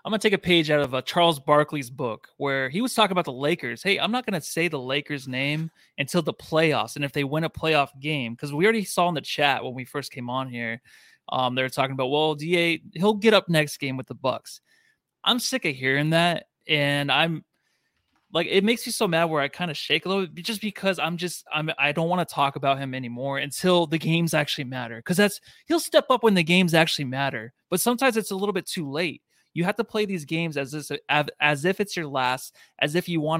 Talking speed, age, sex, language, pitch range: 250 wpm, 20-39, male, English, 140-185 Hz